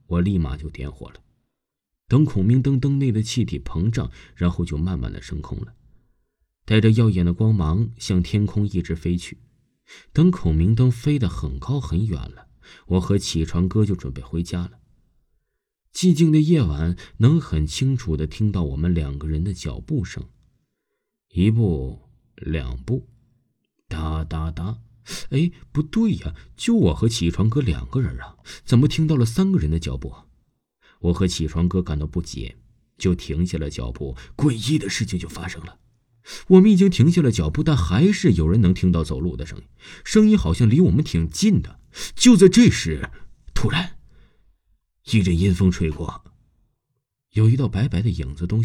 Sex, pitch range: male, 80-125 Hz